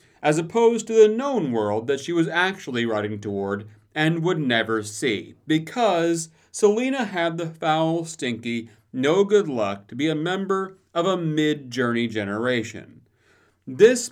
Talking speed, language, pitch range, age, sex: 135 wpm, English, 120-190 Hz, 30-49, male